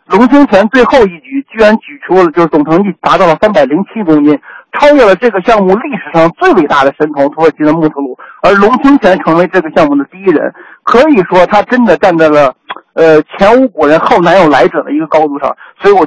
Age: 60-79